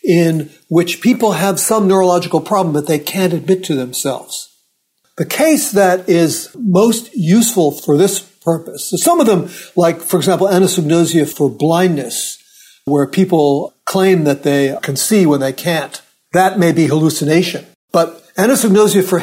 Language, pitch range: English, 160-200 Hz